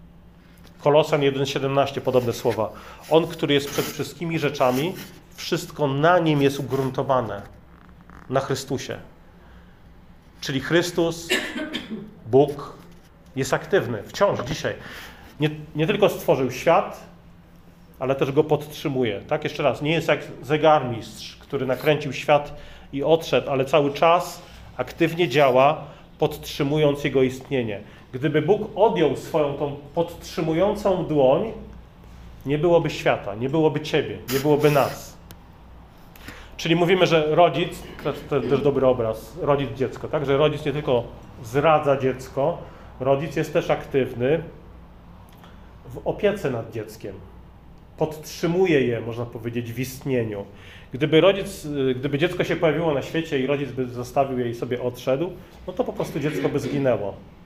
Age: 40-59